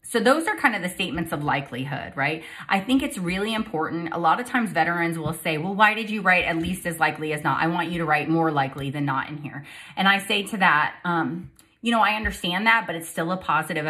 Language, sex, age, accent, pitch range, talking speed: English, female, 30-49, American, 155-200 Hz, 260 wpm